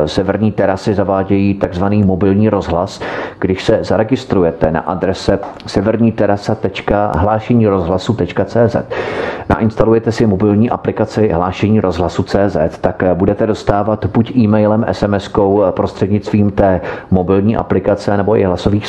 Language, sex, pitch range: Czech, male, 90-110 Hz